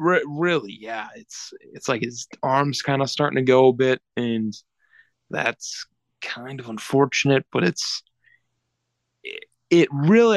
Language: English